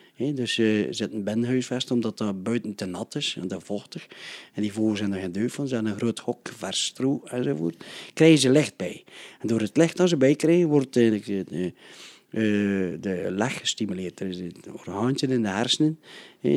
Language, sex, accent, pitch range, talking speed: Dutch, male, Dutch, 105-130 Hz, 205 wpm